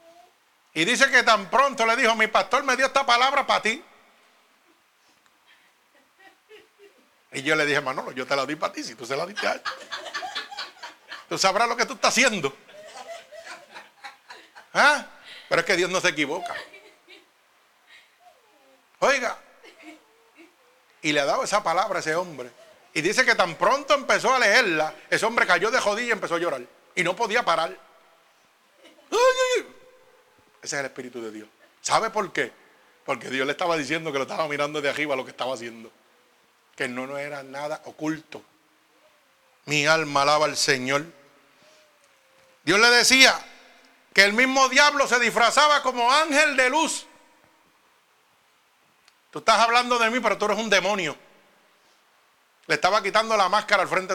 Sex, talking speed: male, 160 wpm